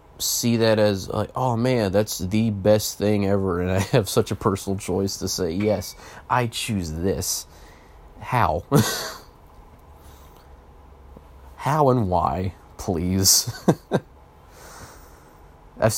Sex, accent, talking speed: male, American, 115 wpm